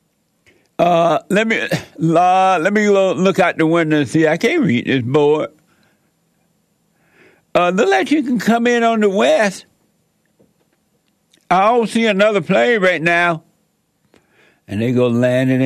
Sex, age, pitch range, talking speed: male, 60-79, 135-220 Hz, 145 wpm